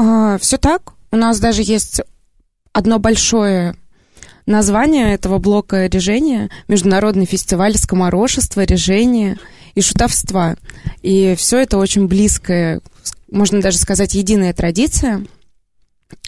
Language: Russian